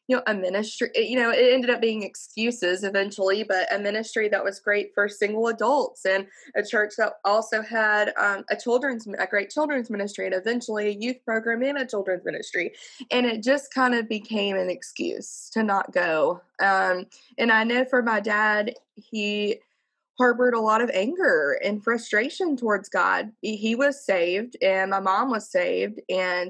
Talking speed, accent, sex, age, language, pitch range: 180 wpm, American, female, 20-39, English, 190-230 Hz